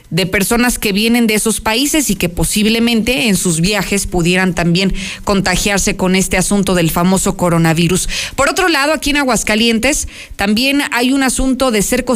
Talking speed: 170 wpm